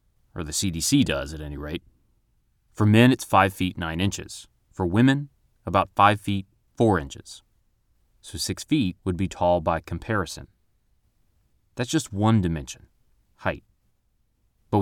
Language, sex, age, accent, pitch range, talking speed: English, male, 30-49, American, 85-115 Hz, 140 wpm